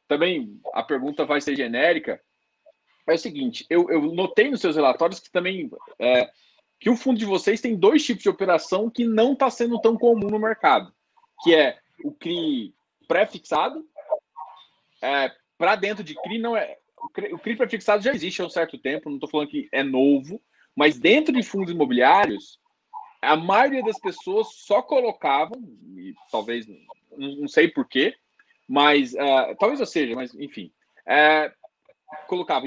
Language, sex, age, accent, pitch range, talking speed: Portuguese, male, 20-39, Brazilian, 175-285 Hz, 165 wpm